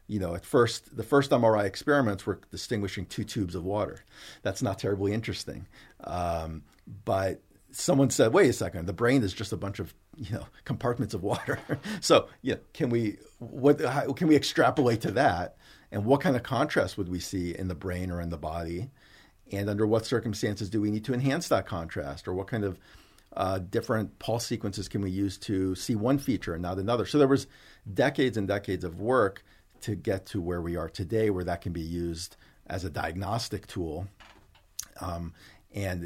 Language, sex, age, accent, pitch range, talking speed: English, male, 40-59, American, 90-110 Hz, 195 wpm